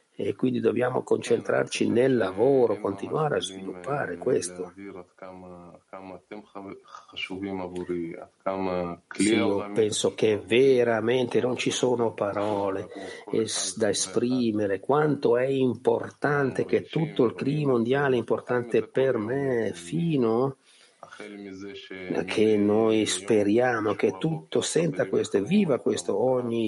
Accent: native